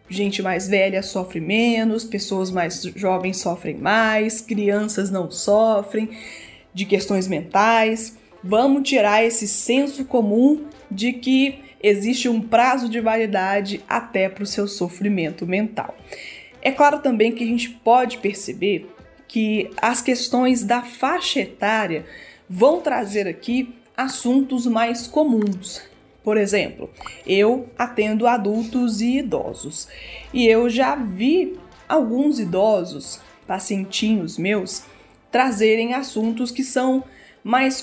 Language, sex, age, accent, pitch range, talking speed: Portuguese, female, 20-39, Brazilian, 200-240 Hz, 115 wpm